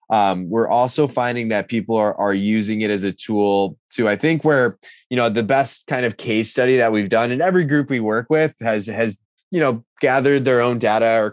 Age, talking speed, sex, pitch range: 20-39, 230 wpm, male, 105-130 Hz